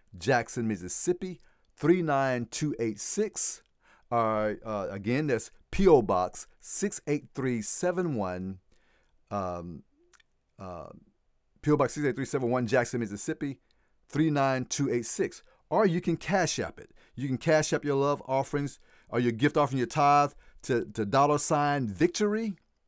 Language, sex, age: English, male, 40-59